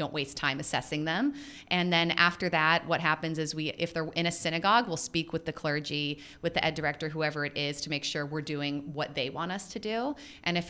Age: 30-49